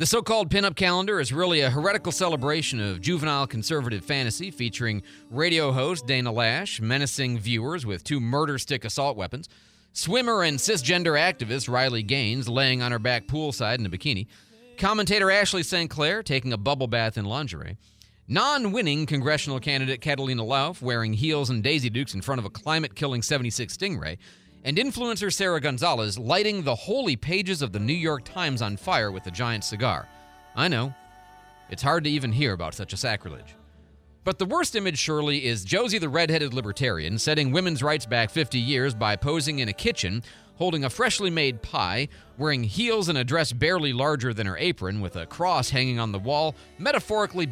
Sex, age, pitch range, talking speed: male, 40-59, 110-160 Hz, 175 wpm